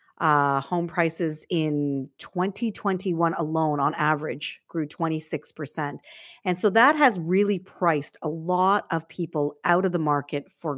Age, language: 40-59, English